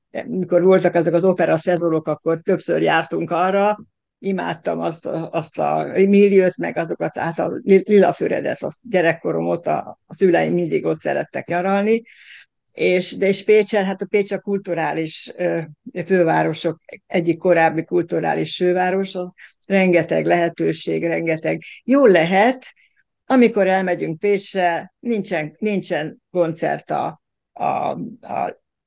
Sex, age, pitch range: female, 60-79, 170-200 Hz